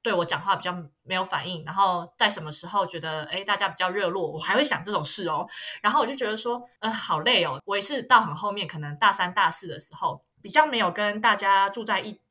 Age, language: 20-39, Chinese